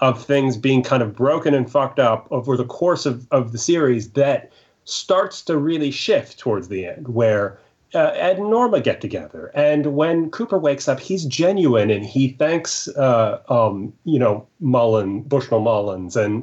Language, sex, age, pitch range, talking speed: English, male, 30-49, 130-180 Hz, 180 wpm